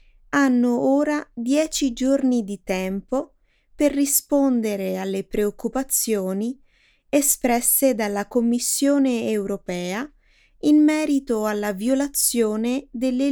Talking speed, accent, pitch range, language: 85 wpm, native, 195-270 Hz, Italian